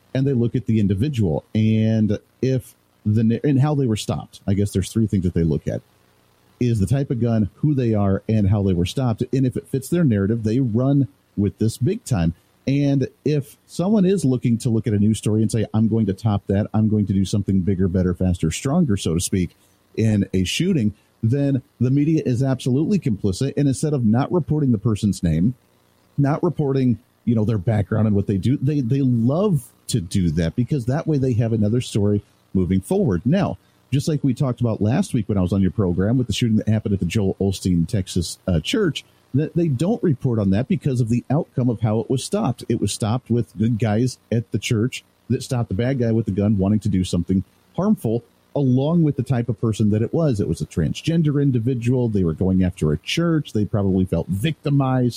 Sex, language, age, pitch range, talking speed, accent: male, English, 40-59, 100-135 Hz, 225 wpm, American